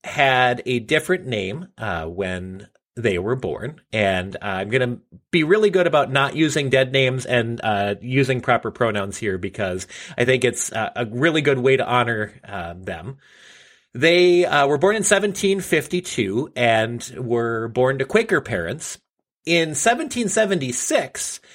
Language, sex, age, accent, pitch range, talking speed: English, male, 30-49, American, 120-180 Hz, 155 wpm